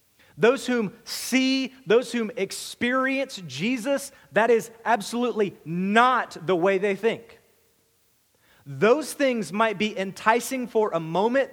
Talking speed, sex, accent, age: 120 wpm, male, American, 40-59